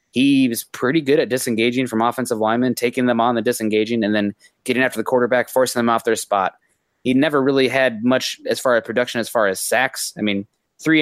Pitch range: 110-125 Hz